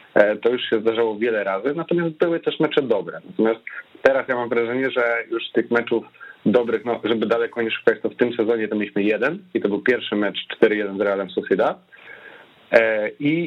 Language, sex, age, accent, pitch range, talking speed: Polish, male, 30-49, native, 105-135 Hz, 190 wpm